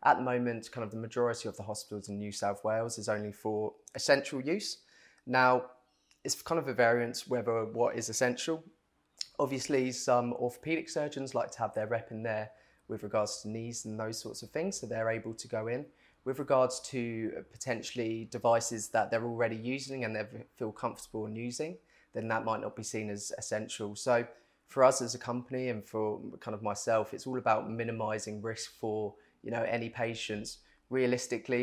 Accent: British